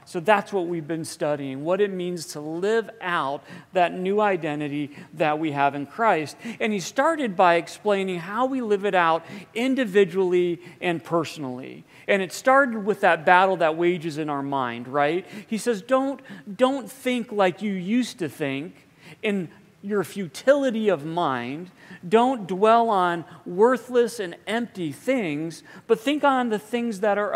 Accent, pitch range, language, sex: American, 160-210 Hz, English, male